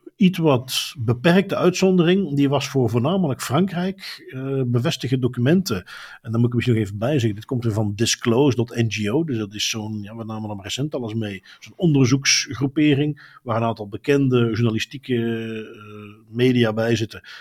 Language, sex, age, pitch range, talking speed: Dutch, male, 50-69, 115-145 Hz, 170 wpm